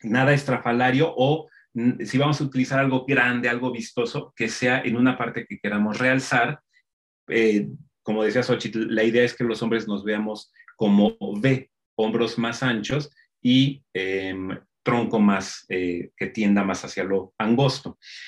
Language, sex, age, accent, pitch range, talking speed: Spanish, male, 30-49, Mexican, 110-135 Hz, 155 wpm